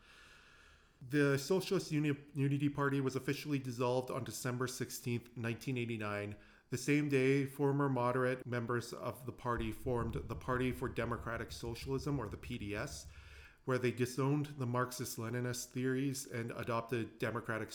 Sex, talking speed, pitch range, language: male, 130 wpm, 110-135 Hz, English